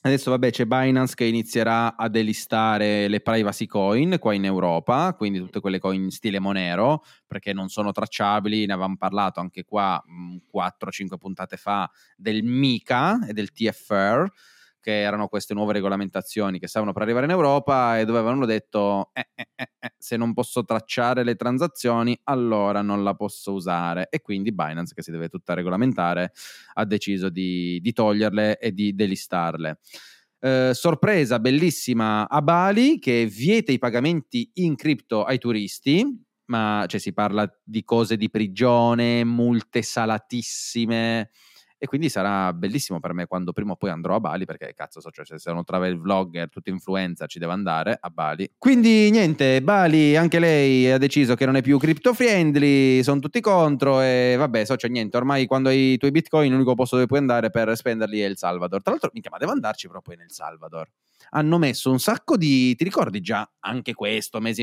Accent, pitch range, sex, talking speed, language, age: native, 100-130 Hz, male, 180 wpm, Italian, 20-39